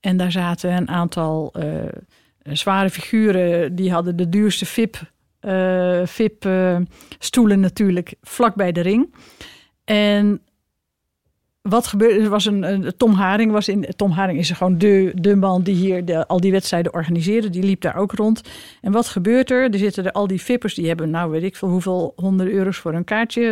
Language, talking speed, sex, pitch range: Dutch, 185 wpm, female, 185-230 Hz